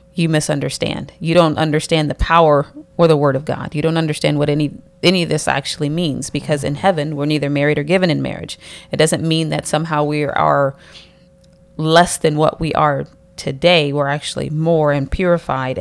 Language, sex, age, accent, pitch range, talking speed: English, female, 30-49, American, 150-175 Hz, 190 wpm